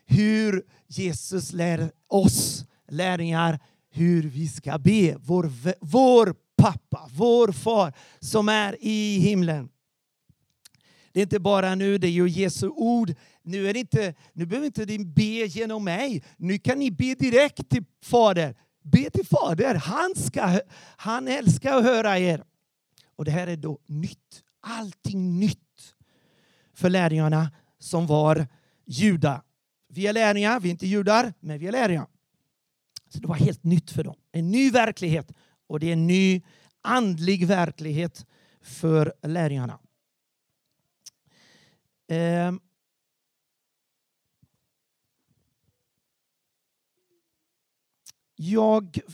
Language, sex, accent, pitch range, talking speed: Swedish, male, native, 160-205 Hz, 120 wpm